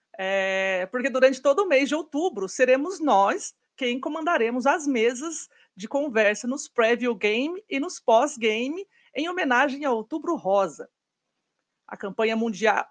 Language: Portuguese